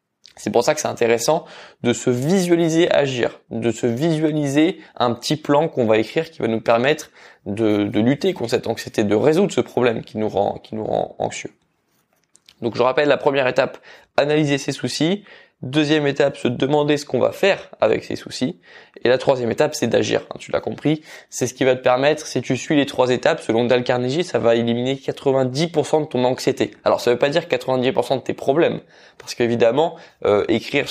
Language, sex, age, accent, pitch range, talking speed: French, male, 20-39, French, 125-160 Hz, 200 wpm